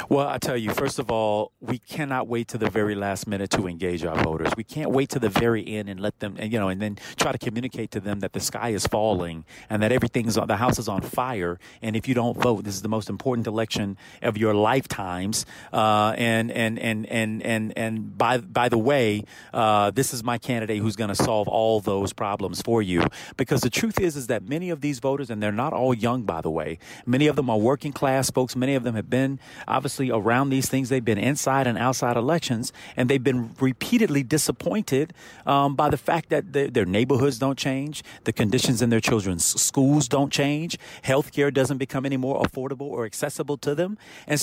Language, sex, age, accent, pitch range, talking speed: English, male, 40-59, American, 110-145 Hz, 225 wpm